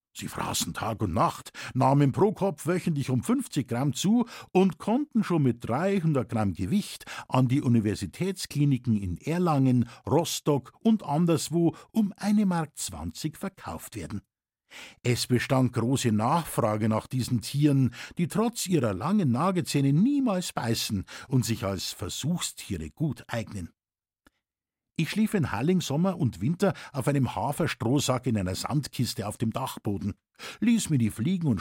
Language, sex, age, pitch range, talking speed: German, male, 50-69, 115-170 Hz, 140 wpm